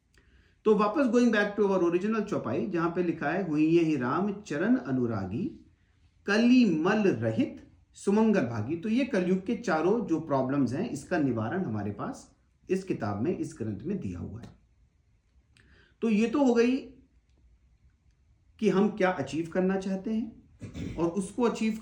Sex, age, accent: male, 40-59, Indian